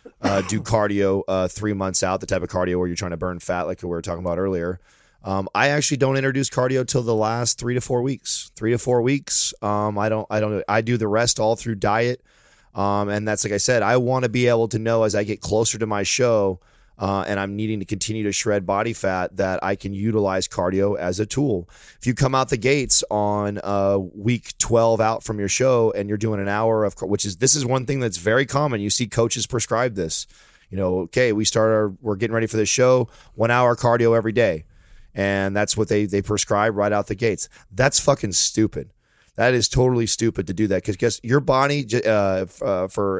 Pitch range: 95-115 Hz